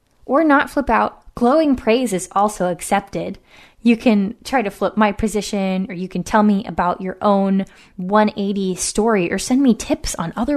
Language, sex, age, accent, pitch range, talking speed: English, female, 20-39, American, 190-245 Hz, 180 wpm